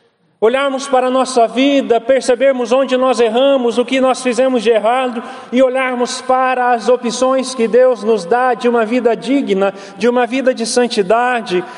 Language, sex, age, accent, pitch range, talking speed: Portuguese, male, 40-59, Brazilian, 200-250 Hz, 170 wpm